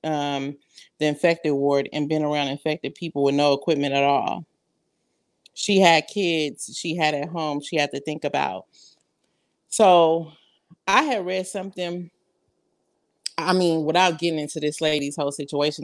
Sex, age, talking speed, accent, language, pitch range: female, 30-49, 150 wpm, American, English, 145-175 Hz